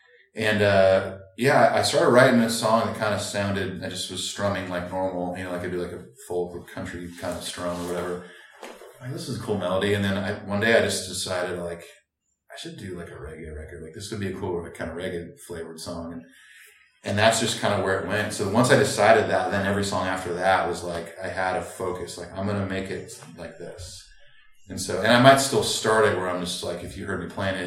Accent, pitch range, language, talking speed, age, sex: American, 85-100 Hz, English, 260 wpm, 30-49, male